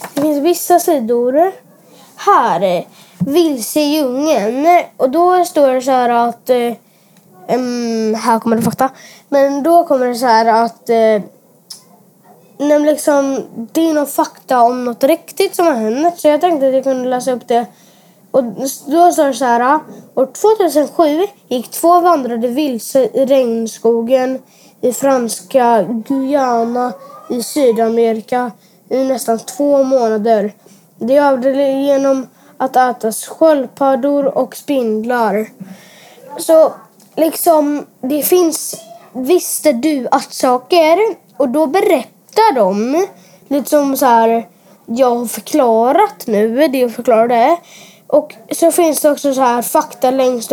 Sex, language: female, Swedish